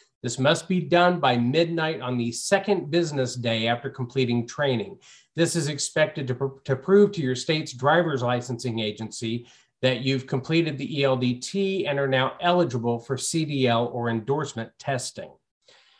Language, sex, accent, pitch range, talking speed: English, male, American, 125-170 Hz, 150 wpm